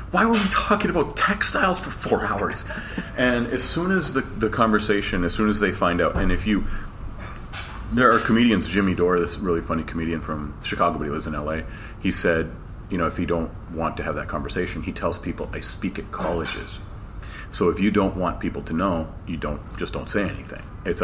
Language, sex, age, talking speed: English, male, 30-49, 215 wpm